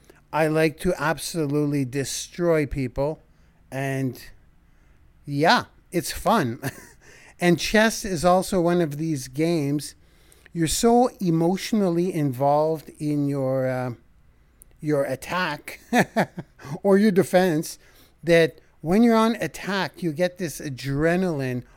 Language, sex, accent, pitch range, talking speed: English, male, American, 130-180 Hz, 110 wpm